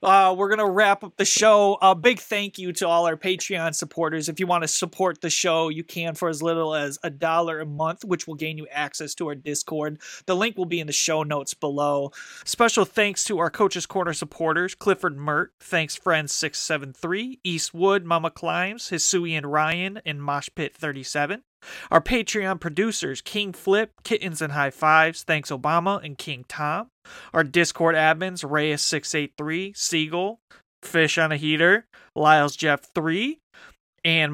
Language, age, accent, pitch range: English, 30-49, American, 150-190 Hz